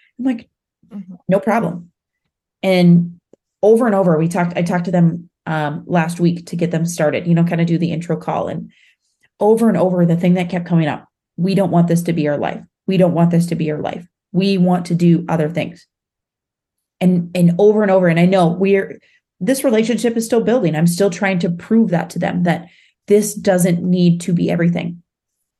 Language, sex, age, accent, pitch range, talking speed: English, female, 30-49, American, 170-195 Hz, 210 wpm